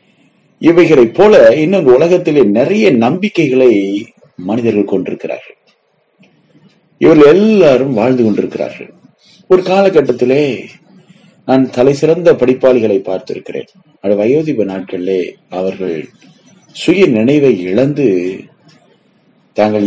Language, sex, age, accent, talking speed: Tamil, male, 30-49, native, 80 wpm